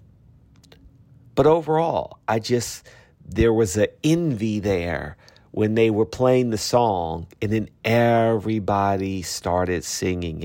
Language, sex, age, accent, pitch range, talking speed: English, male, 40-59, American, 100-130 Hz, 115 wpm